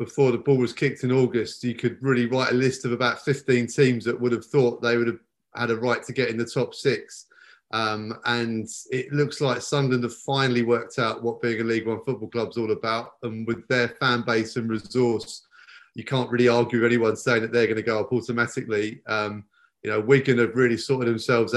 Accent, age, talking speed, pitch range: British, 30-49, 230 wpm, 115-130 Hz